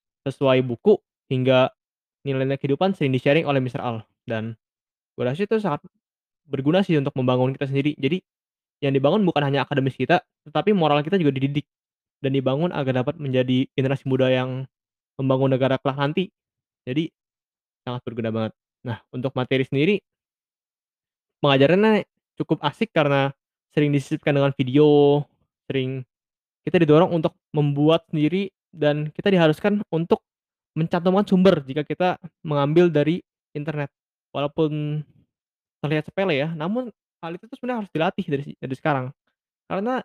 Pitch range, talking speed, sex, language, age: 130-175 Hz, 135 wpm, male, Indonesian, 10-29